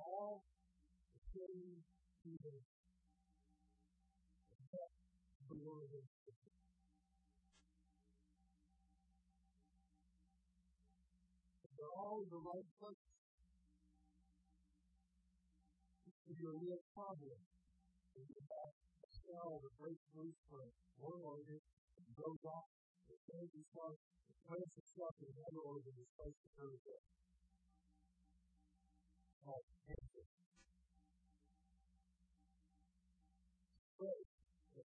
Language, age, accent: English, 50-69, American